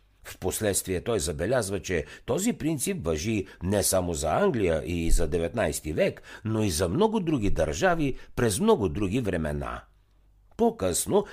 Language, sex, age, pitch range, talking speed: Bulgarian, male, 60-79, 85-130 Hz, 140 wpm